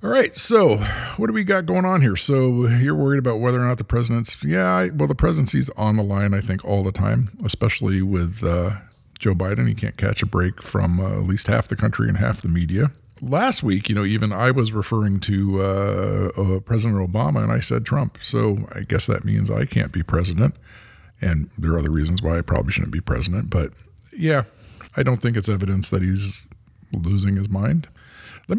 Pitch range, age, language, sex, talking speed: 95-120 Hz, 50-69, English, male, 215 wpm